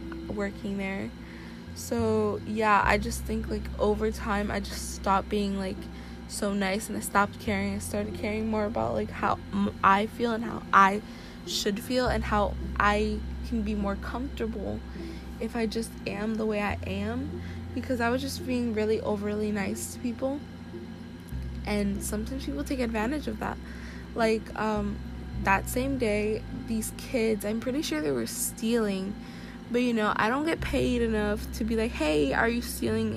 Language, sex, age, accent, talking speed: English, female, 20-39, American, 175 wpm